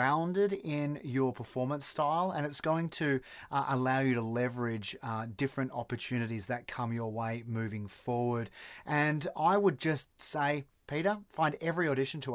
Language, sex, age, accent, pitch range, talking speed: English, male, 30-49, Australian, 120-155 Hz, 155 wpm